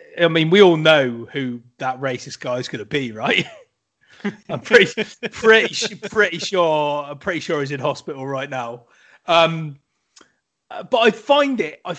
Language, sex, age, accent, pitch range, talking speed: English, male, 30-49, British, 130-175 Hz, 165 wpm